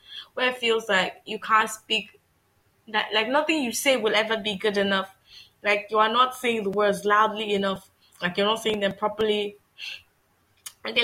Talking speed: 180 wpm